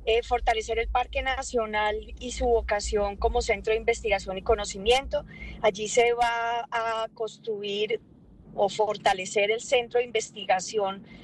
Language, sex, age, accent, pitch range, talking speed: Spanish, female, 20-39, Colombian, 215-250 Hz, 135 wpm